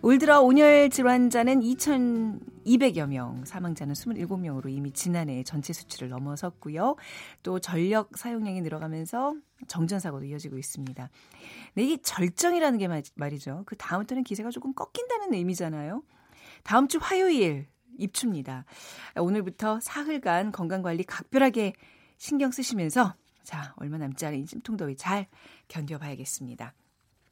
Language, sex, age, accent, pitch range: Korean, female, 40-59, native, 155-235 Hz